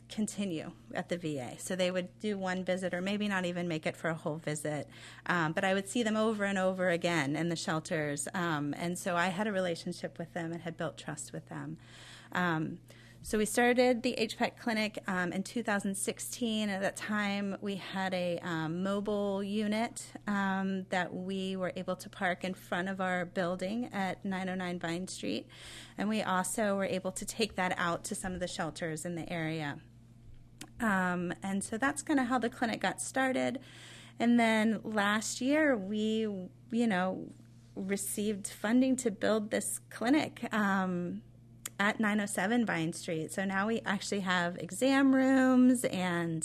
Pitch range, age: 170-210 Hz, 30-49